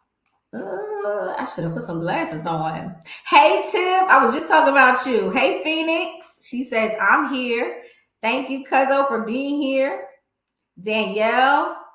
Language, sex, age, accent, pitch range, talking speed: English, female, 20-39, American, 180-270 Hz, 145 wpm